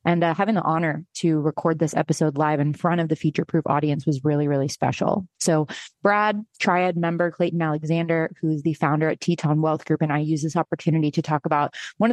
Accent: American